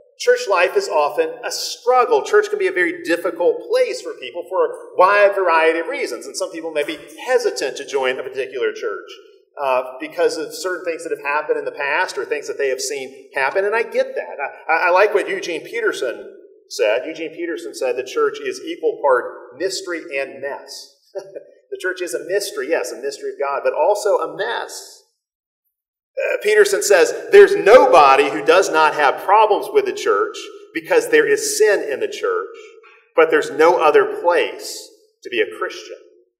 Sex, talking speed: male, 190 wpm